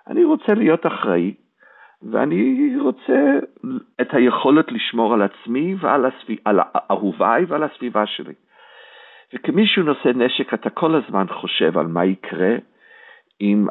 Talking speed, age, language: 125 wpm, 50-69, Hebrew